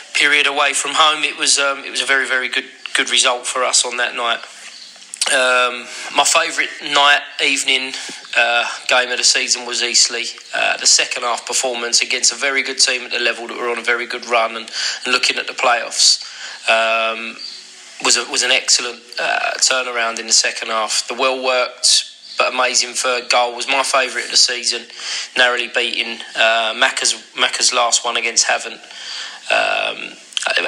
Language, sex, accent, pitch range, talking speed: English, male, British, 120-135 Hz, 180 wpm